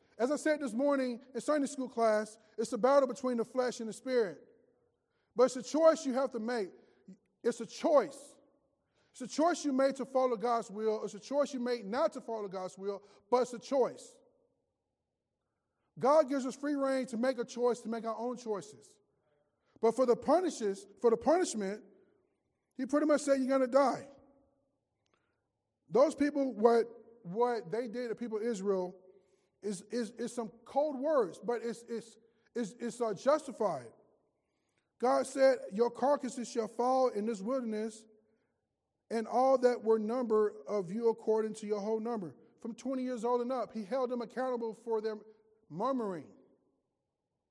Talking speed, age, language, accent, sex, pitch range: 175 wpm, 20-39, English, American, male, 215-260 Hz